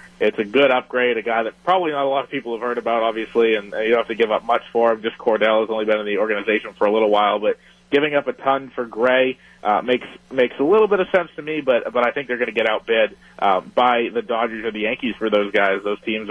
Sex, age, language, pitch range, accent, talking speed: male, 30-49, English, 110-130 Hz, American, 285 wpm